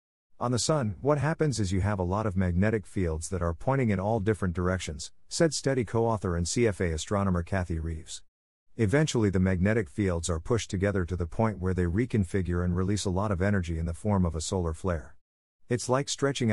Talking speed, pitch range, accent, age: 205 wpm, 85-110 Hz, American, 50-69